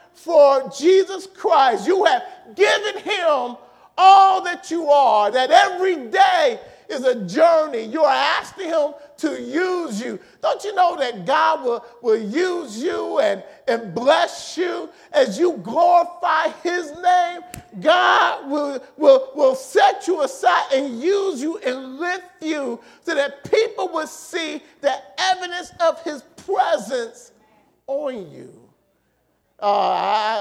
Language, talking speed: English, 135 wpm